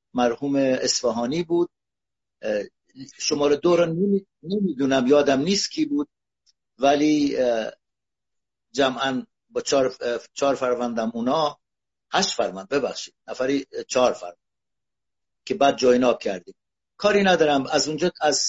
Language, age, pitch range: Persian, 60-79, 125-165 Hz